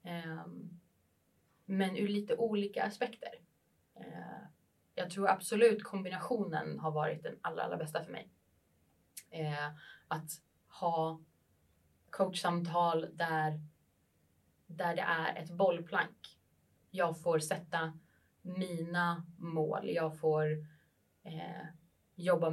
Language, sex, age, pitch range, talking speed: Swedish, female, 20-39, 155-185 Hz, 90 wpm